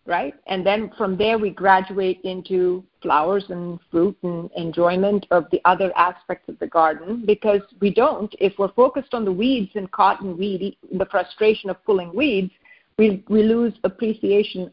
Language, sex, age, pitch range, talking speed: English, female, 50-69, 185-255 Hz, 165 wpm